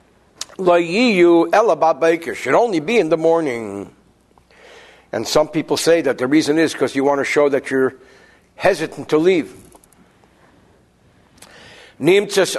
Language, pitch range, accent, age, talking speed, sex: English, 155-220 Hz, American, 60-79, 130 wpm, male